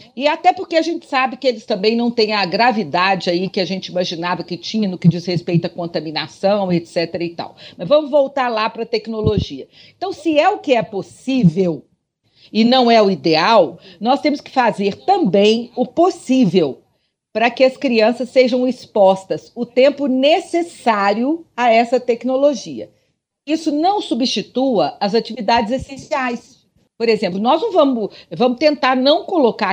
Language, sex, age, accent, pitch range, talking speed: Portuguese, female, 50-69, Brazilian, 200-290 Hz, 165 wpm